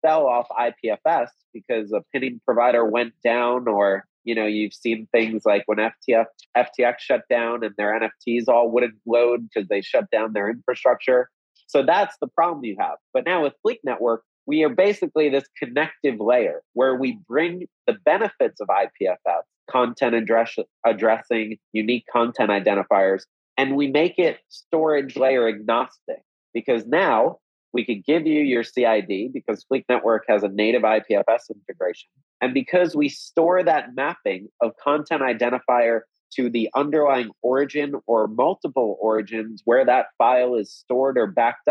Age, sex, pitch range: 30-49, male, 115-155 Hz